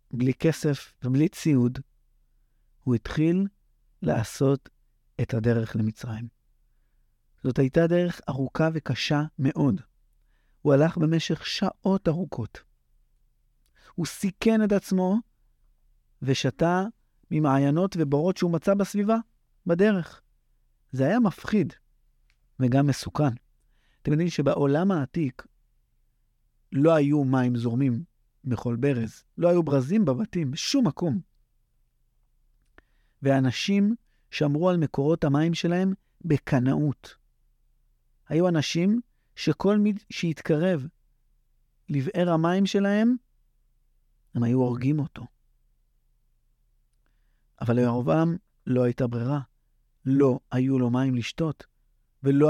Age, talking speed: 50-69, 95 wpm